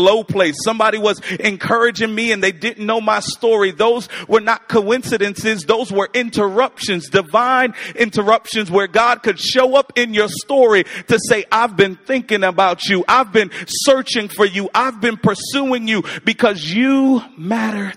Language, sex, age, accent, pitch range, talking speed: English, male, 40-59, American, 205-235 Hz, 160 wpm